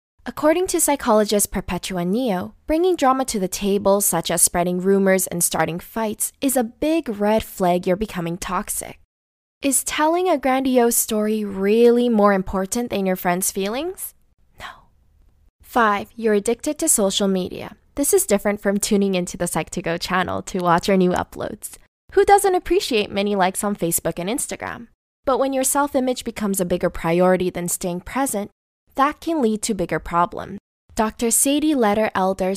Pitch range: 180-250 Hz